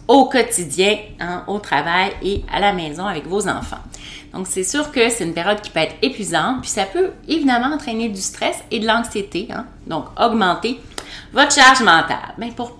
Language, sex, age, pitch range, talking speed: French, female, 30-49, 165-230 Hz, 190 wpm